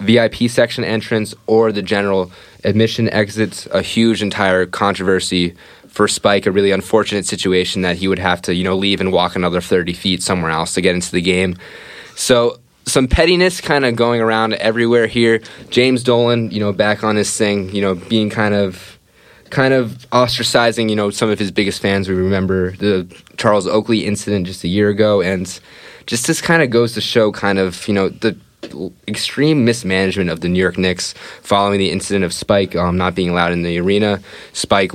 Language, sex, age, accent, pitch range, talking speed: English, male, 20-39, American, 90-110 Hz, 195 wpm